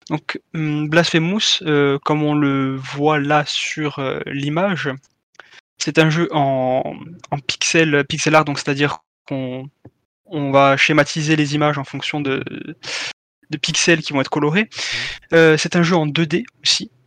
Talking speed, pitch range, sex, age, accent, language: 155 wpm, 140-165 Hz, male, 20-39, French, French